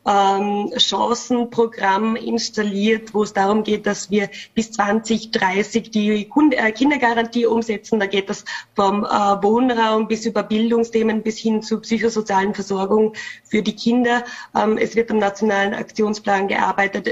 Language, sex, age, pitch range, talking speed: German, female, 20-39, 200-225 Hz, 125 wpm